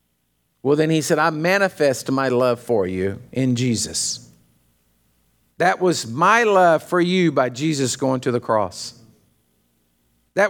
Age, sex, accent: 50-69, male, American